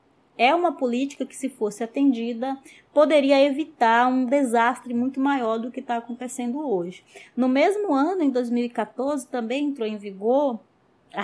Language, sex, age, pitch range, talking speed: Portuguese, female, 20-39, 220-270 Hz, 150 wpm